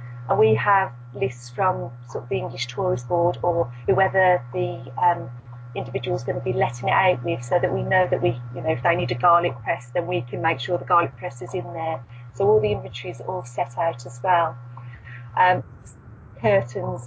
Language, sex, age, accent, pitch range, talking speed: English, female, 30-49, British, 120-170 Hz, 215 wpm